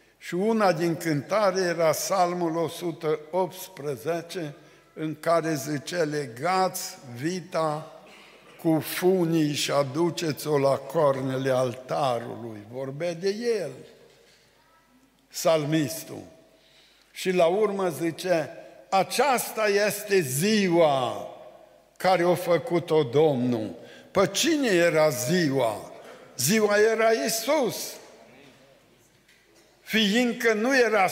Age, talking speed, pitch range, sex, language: 60-79, 85 wpm, 165-235 Hz, male, Romanian